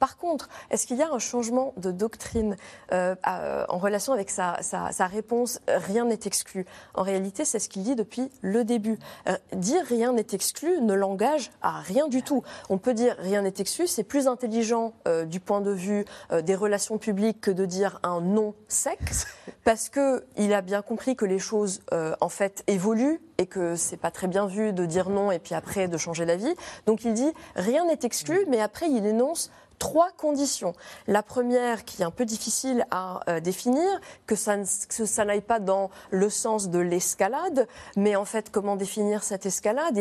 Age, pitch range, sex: 20-39, 195-255 Hz, female